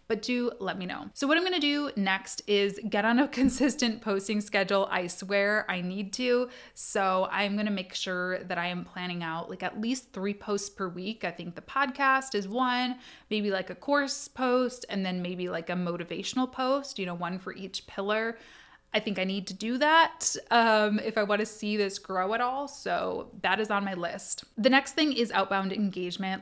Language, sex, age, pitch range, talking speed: English, female, 20-39, 185-235 Hz, 215 wpm